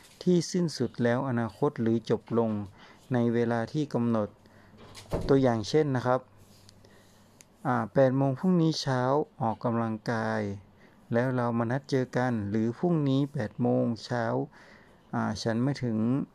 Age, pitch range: 60-79, 115-135 Hz